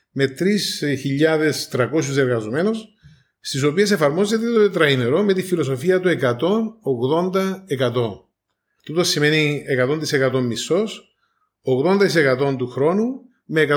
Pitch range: 135-195 Hz